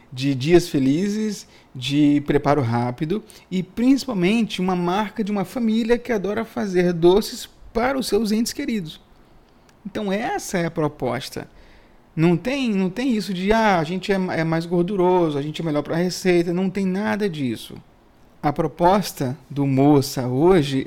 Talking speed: 160 wpm